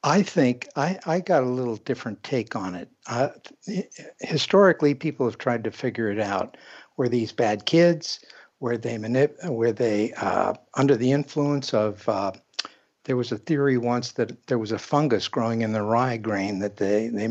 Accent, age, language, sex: American, 60-79, English, male